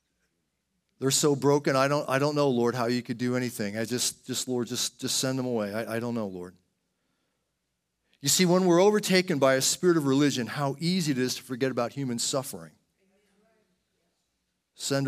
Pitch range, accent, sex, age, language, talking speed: 130-205 Hz, American, male, 40-59, English, 190 wpm